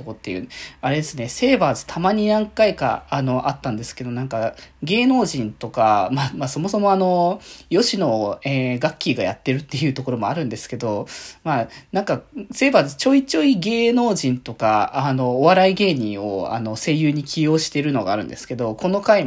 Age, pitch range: 20-39, 130-180 Hz